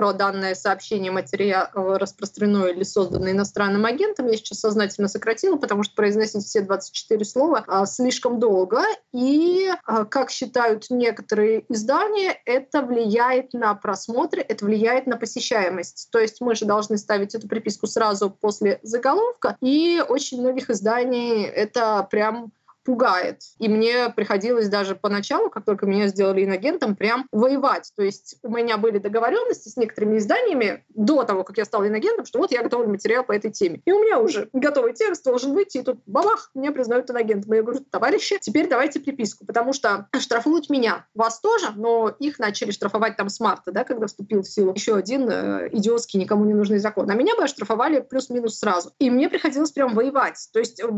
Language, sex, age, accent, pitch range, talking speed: Russian, female, 20-39, native, 210-260 Hz, 170 wpm